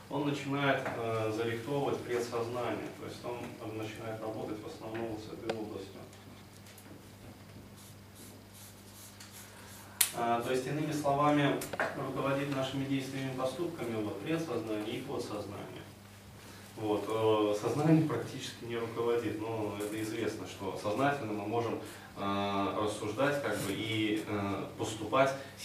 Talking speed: 110 wpm